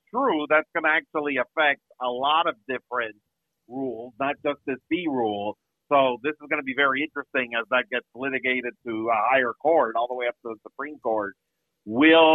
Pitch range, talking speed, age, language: 125-155 Hz, 200 wpm, 50-69, English